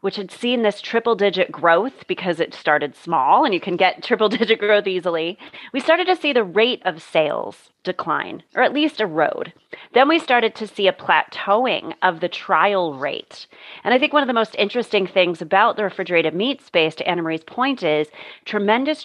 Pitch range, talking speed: 170-230 Hz, 200 wpm